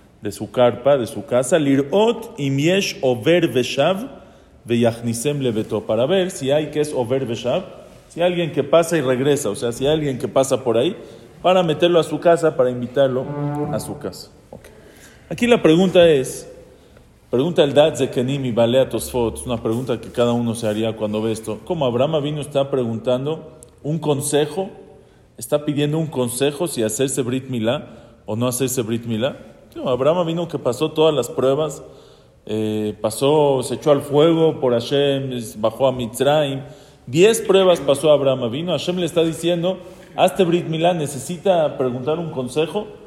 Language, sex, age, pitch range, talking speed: English, male, 40-59, 125-170 Hz, 155 wpm